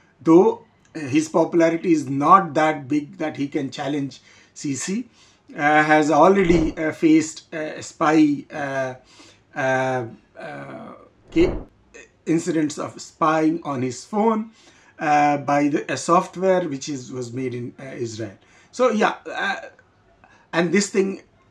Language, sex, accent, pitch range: English, male, Indian, 140-195 Hz